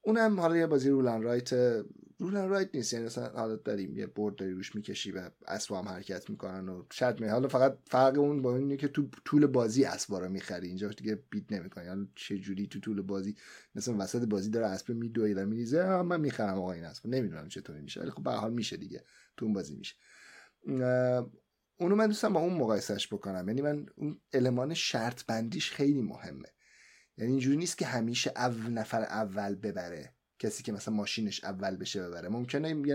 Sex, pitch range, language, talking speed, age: male, 105-140 Hz, Persian, 195 wpm, 30-49